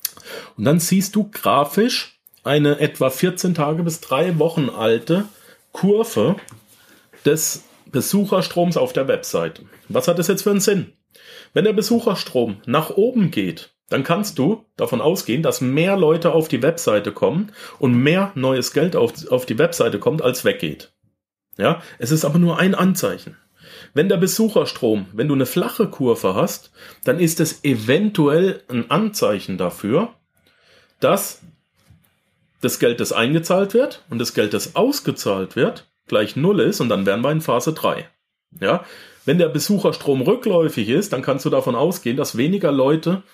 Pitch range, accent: 135-185 Hz, German